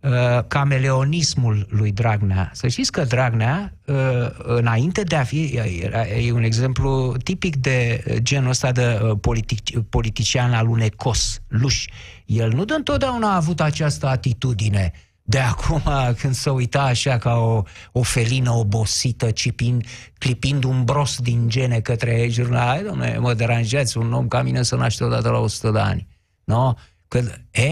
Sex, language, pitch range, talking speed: male, Romanian, 115-180 Hz, 160 wpm